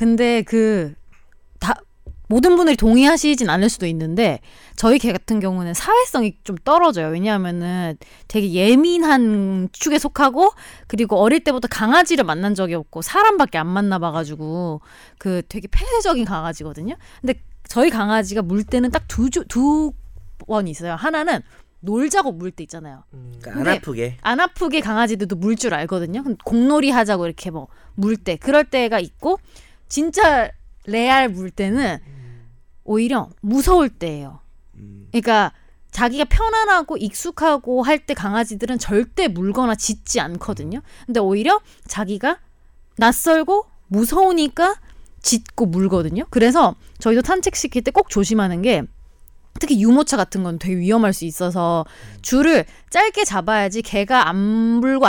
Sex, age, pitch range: female, 20-39, 185-285 Hz